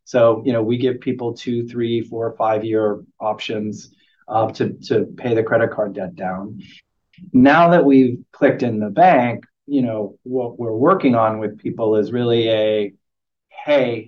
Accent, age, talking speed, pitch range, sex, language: American, 30-49, 170 wpm, 115-135 Hz, male, English